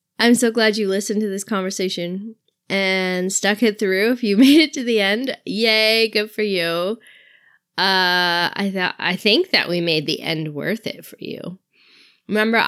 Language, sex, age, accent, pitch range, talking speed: English, female, 20-39, American, 185-240 Hz, 180 wpm